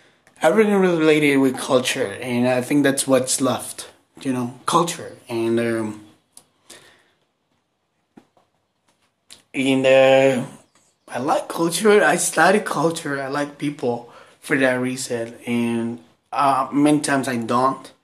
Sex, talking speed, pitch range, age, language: male, 120 wpm, 125-160 Hz, 20-39, English